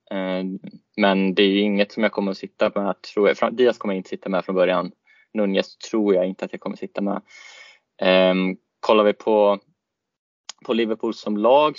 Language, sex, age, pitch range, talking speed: Swedish, male, 20-39, 95-105 Hz, 195 wpm